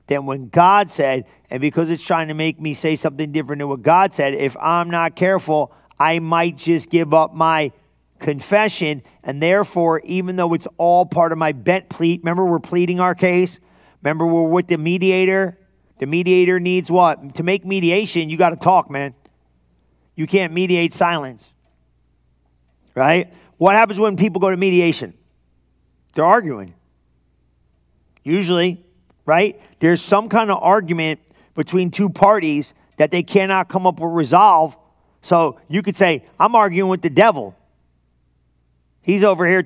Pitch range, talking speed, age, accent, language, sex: 150-185 Hz, 160 wpm, 40-59, American, English, male